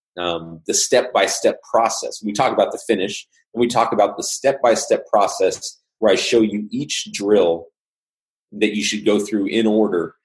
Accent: American